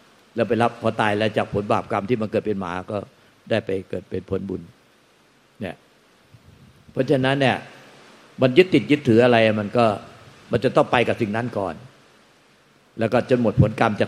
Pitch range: 110-135 Hz